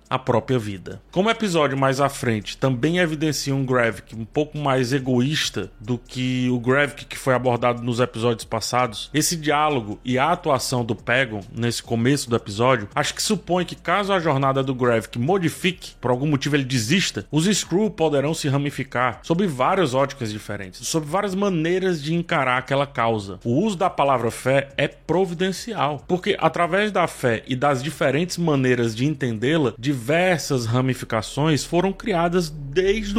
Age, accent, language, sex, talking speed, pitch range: 20-39, Brazilian, Portuguese, male, 165 wpm, 125-160 Hz